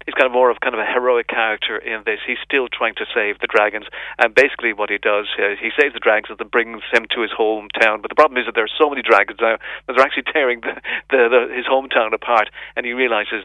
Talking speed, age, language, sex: 270 wpm, 40-59, English, male